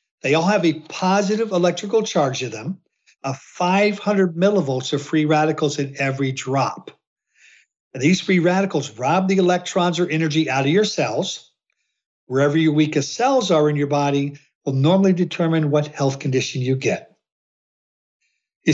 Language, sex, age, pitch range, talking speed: English, male, 60-79, 145-185 Hz, 150 wpm